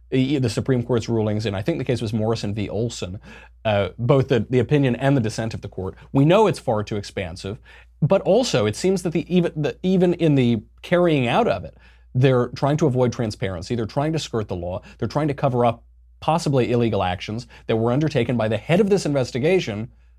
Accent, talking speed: American, 210 wpm